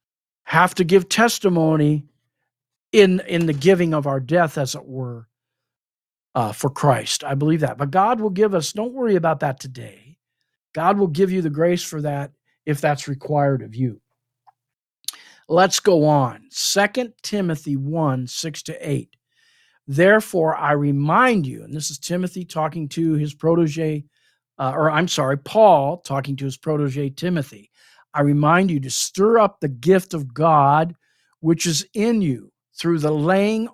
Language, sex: English, male